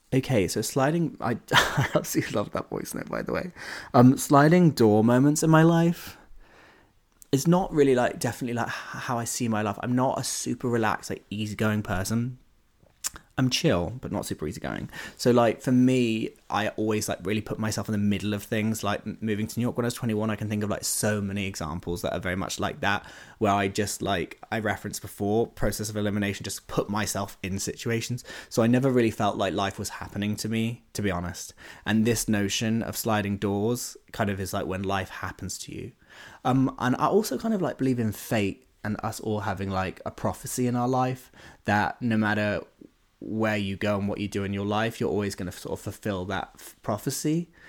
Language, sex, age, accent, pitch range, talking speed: English, male, 20-39, British, 100-120 Hz, 215 wpm